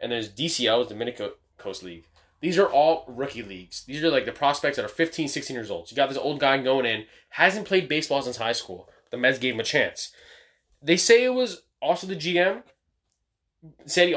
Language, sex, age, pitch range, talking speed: English, male, 20-39, 120-170 Hz, 215 wpm